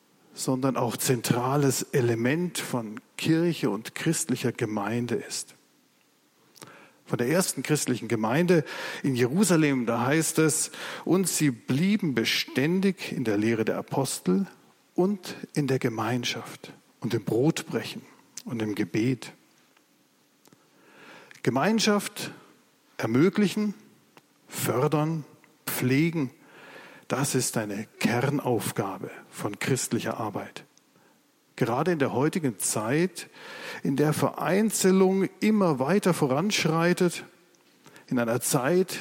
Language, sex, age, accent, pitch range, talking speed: German, male, 50-69, German, 125-170 Hz, 100 wpm